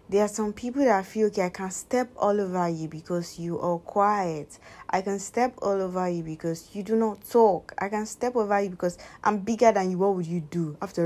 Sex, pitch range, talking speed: female, 165-210 Hz, 235 wpm